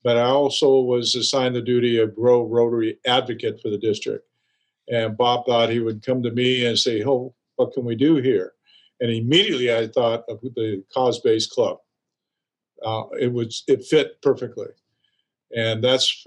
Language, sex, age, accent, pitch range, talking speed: English, male, 50-69, American, 115-140 Hz, 170 wpm